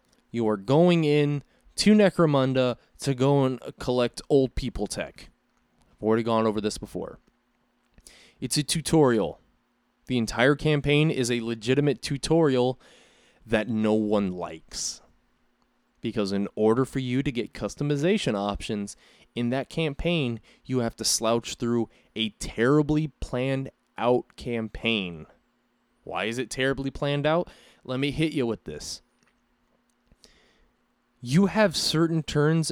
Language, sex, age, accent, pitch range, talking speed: English, male, 20-39, American, 120-150 Hz, 130 wpm